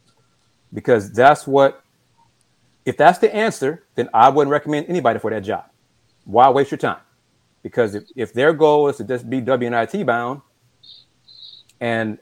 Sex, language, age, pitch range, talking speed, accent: male, English, 30-49, 120-165 Hz, 150 wpm, American